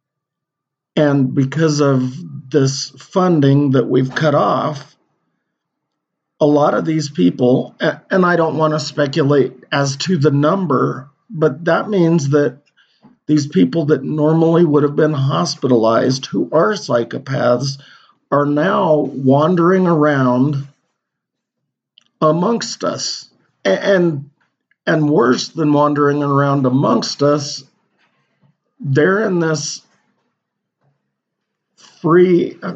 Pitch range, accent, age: 140-155 Hz, American, 50-69